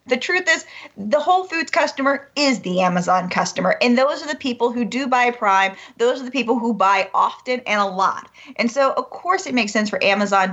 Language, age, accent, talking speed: English, 30-49, American, 220 wpm